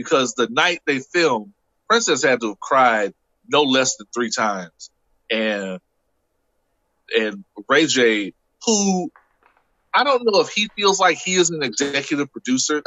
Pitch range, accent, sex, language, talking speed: 125-180 Hz, American, male, English, 150 wpm